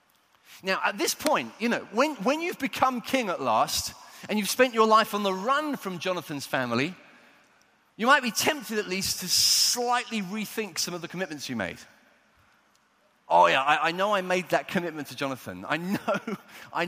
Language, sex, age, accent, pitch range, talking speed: English, male, 30-49, British, 155-220 Hz, 190 wpm